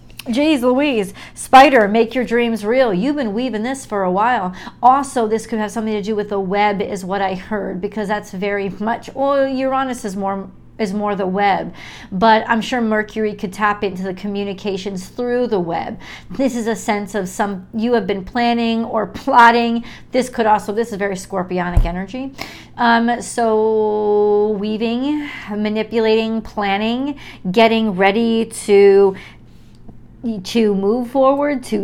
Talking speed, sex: 160 wpm, female